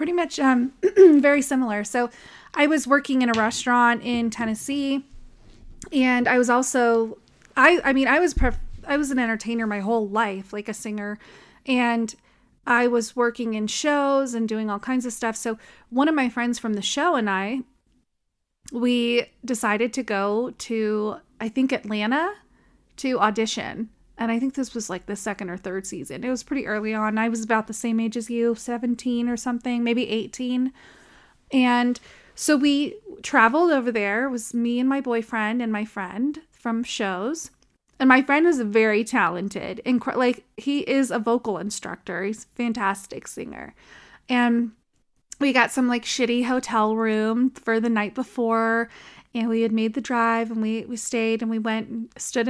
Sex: female